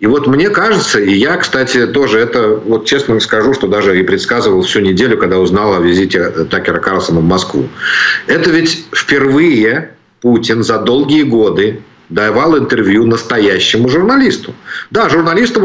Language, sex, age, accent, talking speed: Ukrainian, male, 50-69, native, 150 wpm